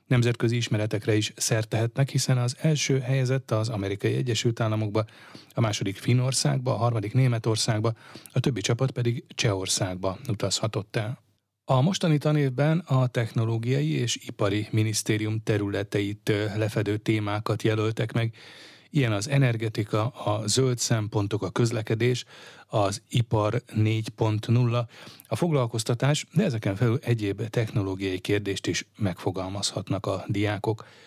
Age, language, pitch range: 30-49, Hungarian, 105-125 Hz